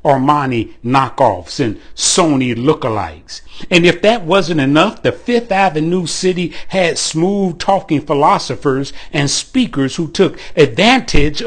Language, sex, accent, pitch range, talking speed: English, male, American, 125-170 Hz, 115 wpm